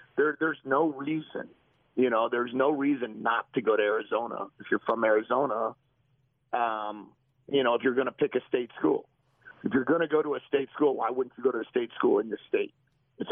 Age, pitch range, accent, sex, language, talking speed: 50-69, 125-160 Hz, American, male, English, 220 wpm